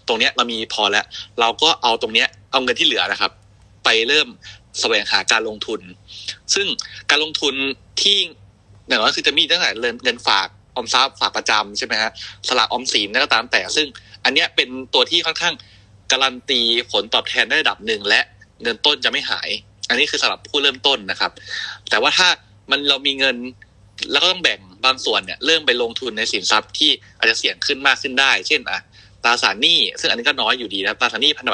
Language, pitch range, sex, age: Thai, 105-140 Hz, male, 20-39